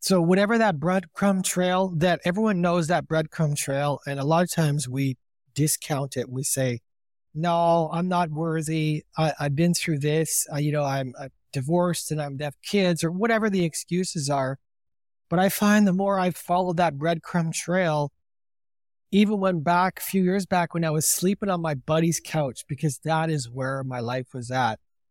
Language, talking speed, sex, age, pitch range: English, 185 wpm, male, 30-49, 145-190 Hz